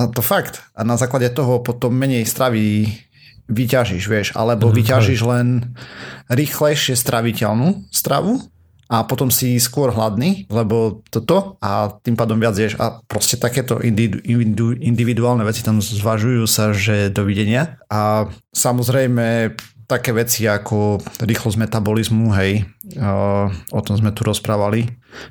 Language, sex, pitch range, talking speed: Slovak, male, 105-120 Hz, 125 wpm